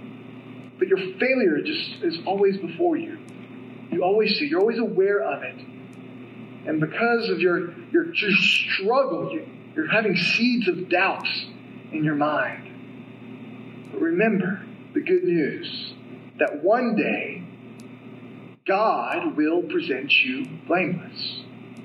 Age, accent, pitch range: 40-59, American, 205-290 Hz